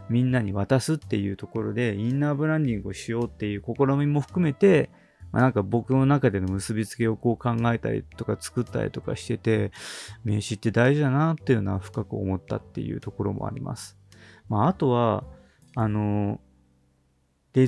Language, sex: Japanese, male